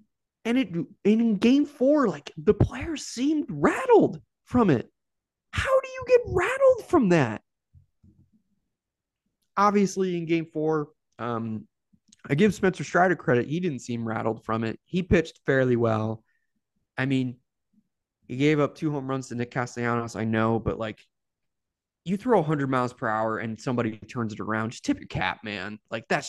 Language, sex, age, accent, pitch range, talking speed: English, male, 20-39, American, 110-185 Hz, 165 wpm